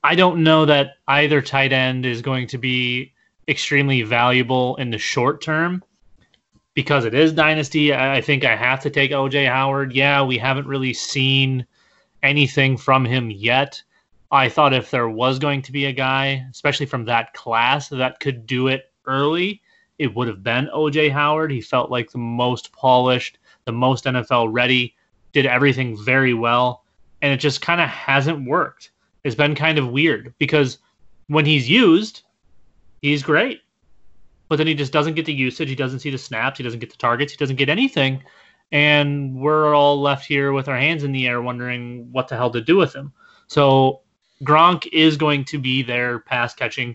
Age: 20-39